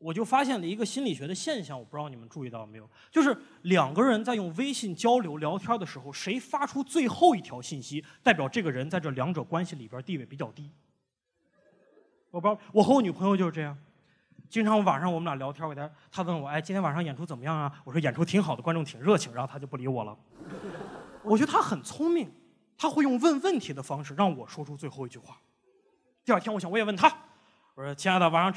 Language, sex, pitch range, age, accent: Chinese, male, 145-225 Hz, 20-39, native